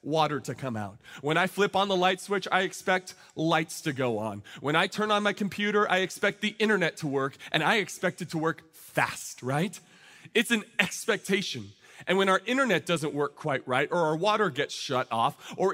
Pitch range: 155-215 Hz